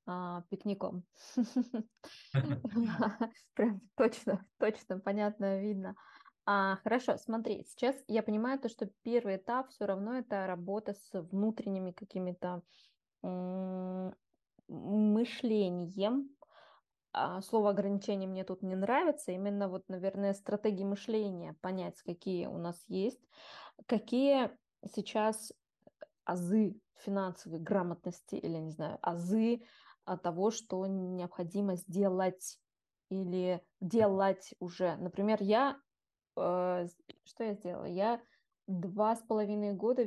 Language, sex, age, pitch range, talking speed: Russian, female, 20-39, 185-225 Hz, 100 wpm